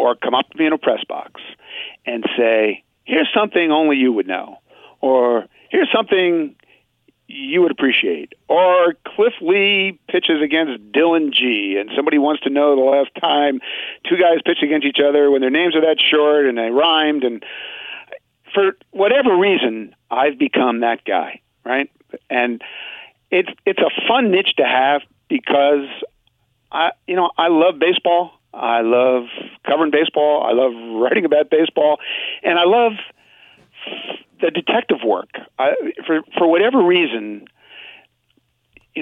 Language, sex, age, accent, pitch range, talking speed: English, male, 50-69, American, 125-175 Hz, 150 wpm